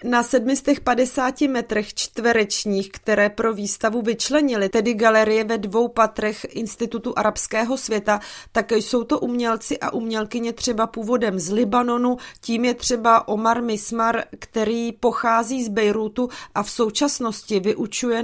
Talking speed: 130 wpm